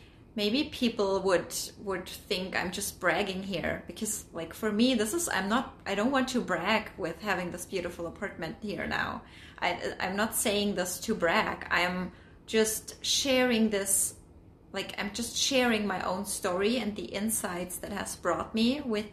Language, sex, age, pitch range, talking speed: English, female, 20-39, 170-215 Hz, 175 wpm